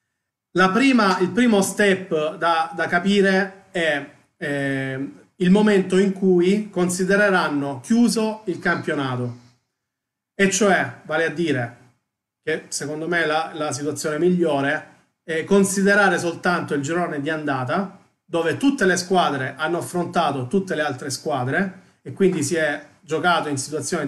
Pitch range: 145-185 Hz